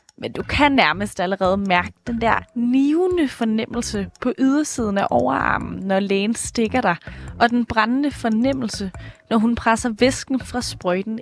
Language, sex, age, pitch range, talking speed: Danish, female, 20-39, 210-265 Hz, 150 wpm